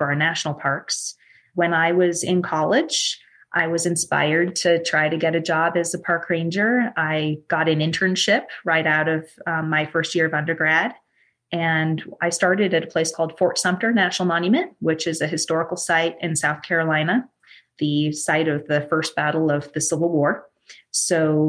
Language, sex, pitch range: English, female, 150-175 Hz